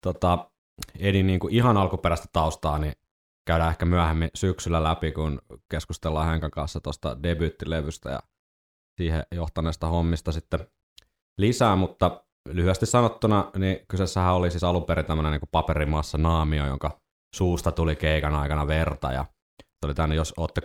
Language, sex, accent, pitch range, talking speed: Finnish, male, native, 75-90 Hz, 140 wpm